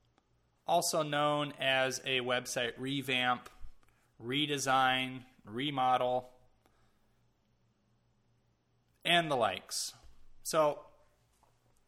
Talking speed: 60 wpm